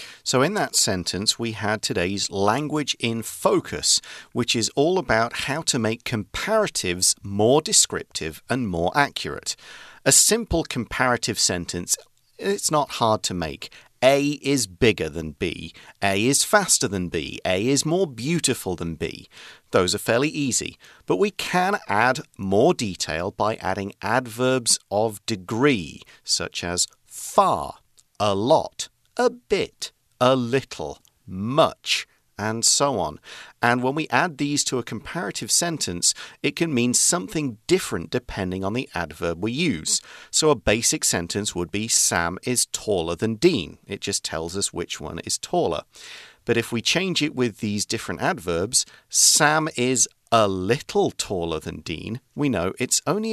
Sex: male